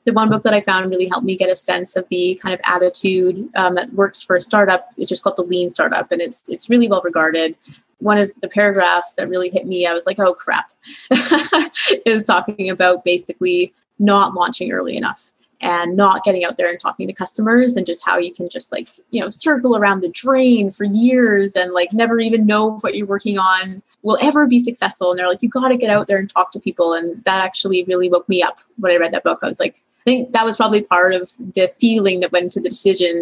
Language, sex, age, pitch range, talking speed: English, female, 20-39, 180-230 Hz, 245 wpm